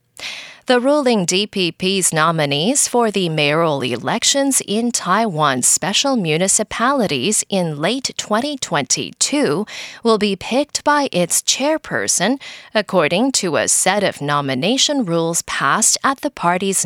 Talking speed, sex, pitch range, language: 115 wpm, female, 175-255 Hz, English